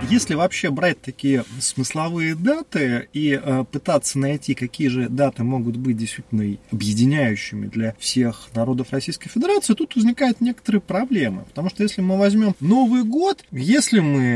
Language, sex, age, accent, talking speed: Russian, male, 30-49, native, 145 wpm